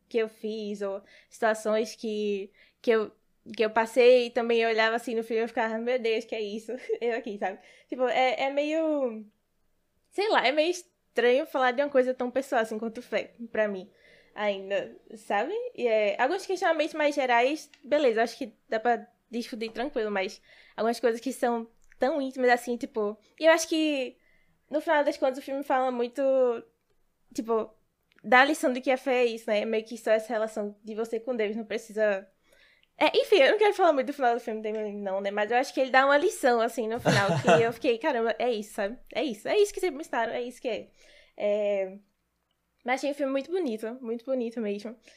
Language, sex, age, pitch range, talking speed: Portuguese, female, 10-29, 220-280 Hz, 215 wpm